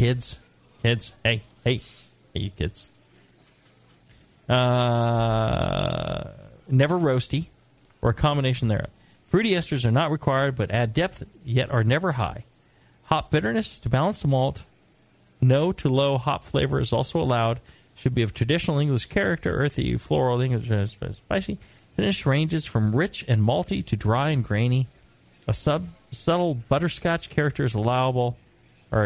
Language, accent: English, American